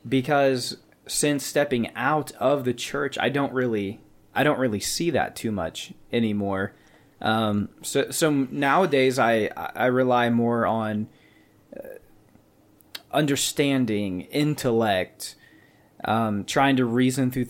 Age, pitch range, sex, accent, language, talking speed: 20-39, 105-135 Hz, male, American, English, 115 wpm